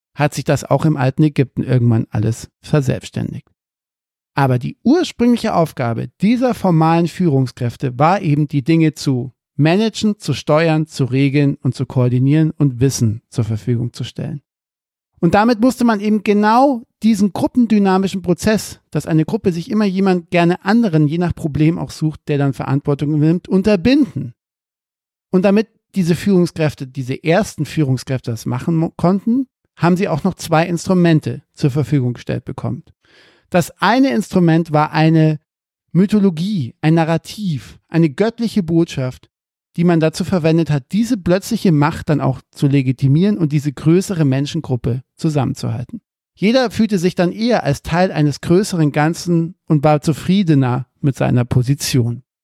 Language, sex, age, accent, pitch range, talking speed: German, male, 50-69, German, 140-190 Hz, 145 wpm